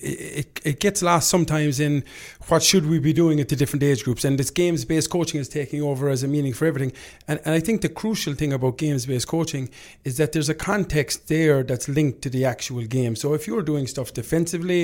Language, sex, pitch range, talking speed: English, male, 140-170 Hz, 225 wpm